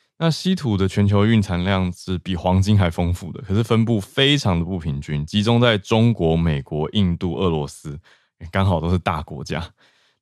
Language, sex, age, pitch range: Chinese, male, 20-39, 90-115 Hz